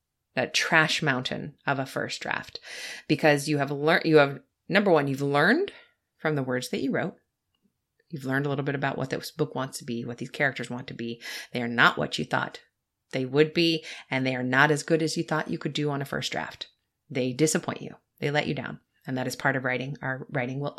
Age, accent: 30-49, American